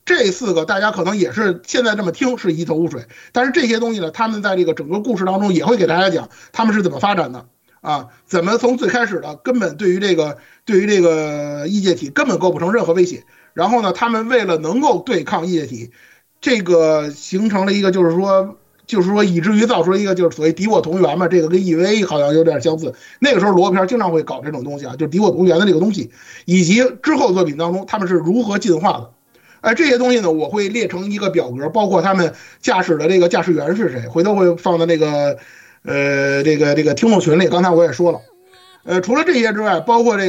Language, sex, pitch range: Chinese, male, 165-215 Hz